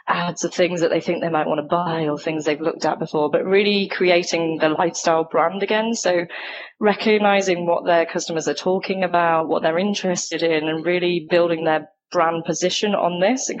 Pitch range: 165-195 Hz